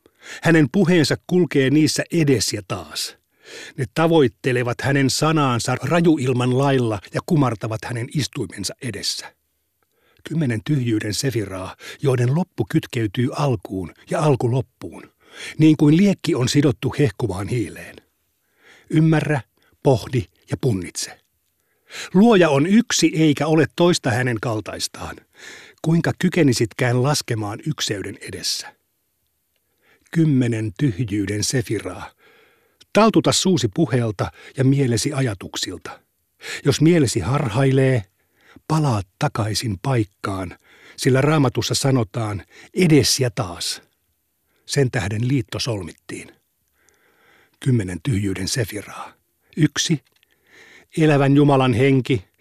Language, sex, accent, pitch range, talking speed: Finnish, male, native, 115-150 Hz, 95 wpm